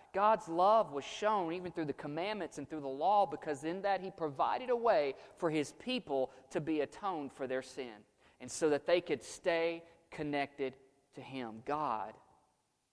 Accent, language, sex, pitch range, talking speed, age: American, English, male, 130-175 Hz, 175 wpm, 30-49